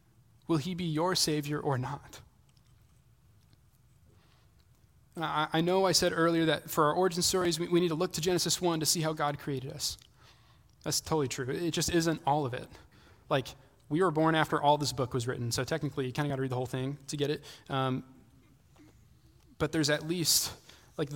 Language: English